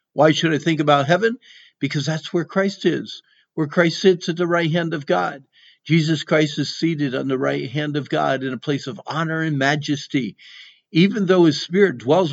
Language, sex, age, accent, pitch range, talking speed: English, male, 50-69, American, 140-175 Hz, 205 wpm